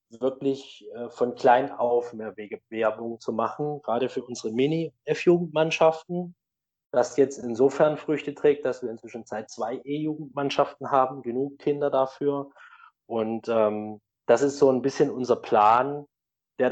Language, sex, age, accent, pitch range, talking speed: German, male, 20-39, German, 115-140 Hz, 135 wpm